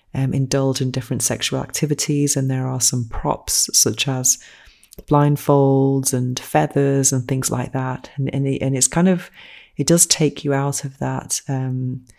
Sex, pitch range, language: female, 130-145 Hz, English